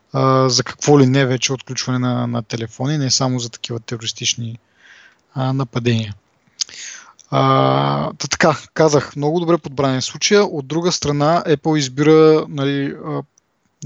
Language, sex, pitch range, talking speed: Bulgarian, male, 125-155 Hz, 135 wpm